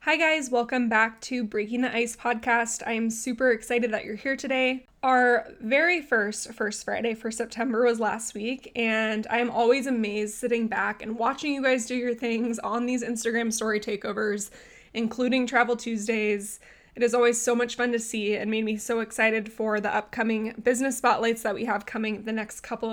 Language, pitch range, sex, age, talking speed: English, 220-250 Hz, female, 20-39, 195 wpm